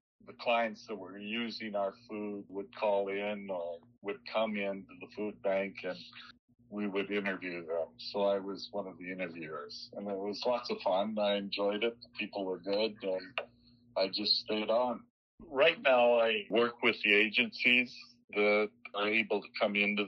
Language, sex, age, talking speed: English, male, 50-69, 180 wpm